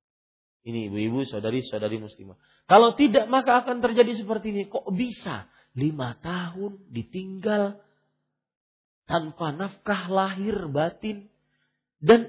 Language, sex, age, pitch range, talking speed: Malay, male, 40-59, 120-185 Hz, 105 wpm